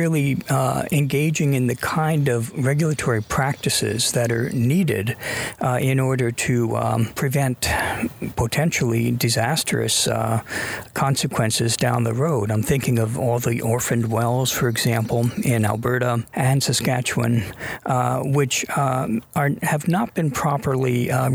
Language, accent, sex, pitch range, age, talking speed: English, American, male, 120-145 Hz, 50-69, 130 wpm